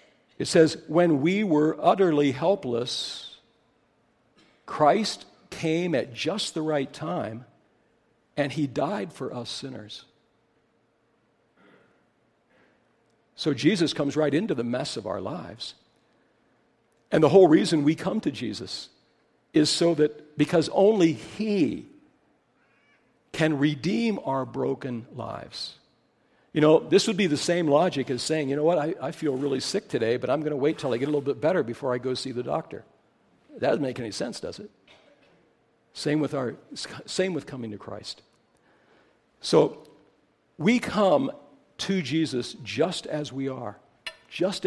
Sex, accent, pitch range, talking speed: male, American, 135-165 Hz, 150 wpm